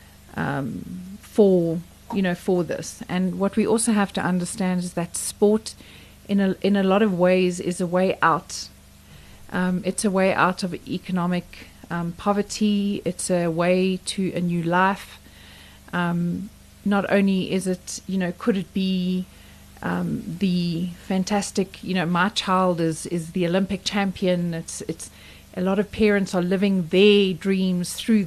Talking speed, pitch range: 160 wpm, 180-205 Hz